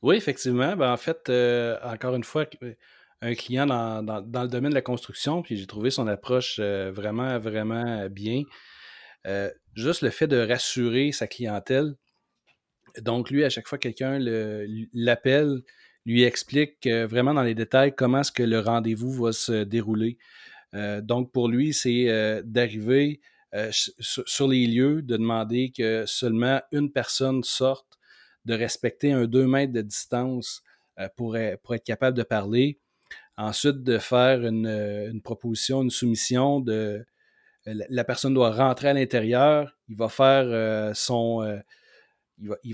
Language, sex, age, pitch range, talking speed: French, male, 30-49, 110-130 Hz, 140 wpm